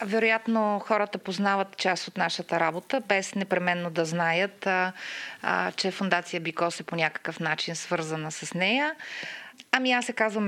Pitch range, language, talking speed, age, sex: 170-210 Hz, Bulgarian, 145 wpm, 30-49, female